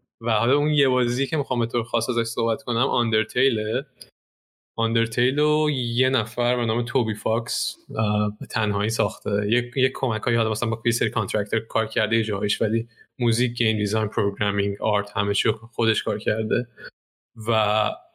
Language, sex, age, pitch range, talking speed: Persian, male, 20-39, 110-125 Hz, 165 wpm